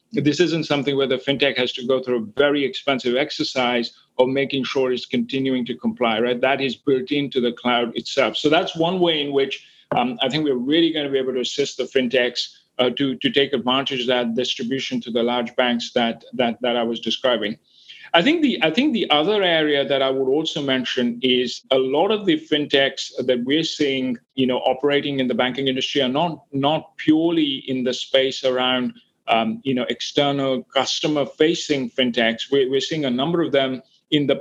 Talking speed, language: 205 wpm, English